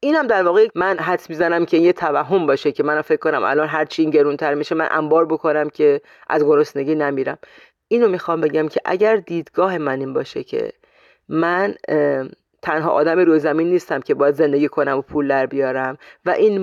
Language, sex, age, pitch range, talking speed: Persian, female, 30-49, 145-195 Hz, 195 wpm